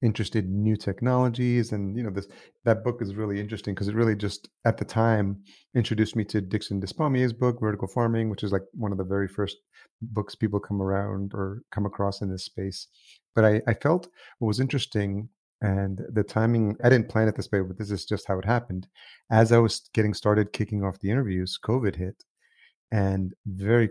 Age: 30-49